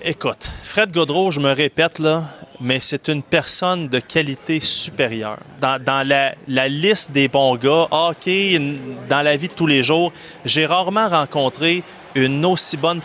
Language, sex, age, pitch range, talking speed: French, male, 30-49, 140-175 Hz, 165 wpm